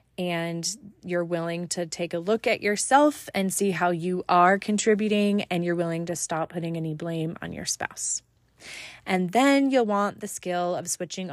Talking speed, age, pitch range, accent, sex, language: 180 wpm, 20-39, 175-215 Hz, American, female, English